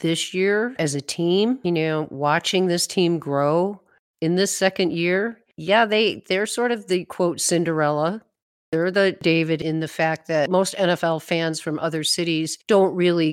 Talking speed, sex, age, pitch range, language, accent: 170 wpm, female, 50-69, 155-185 Hz, English, American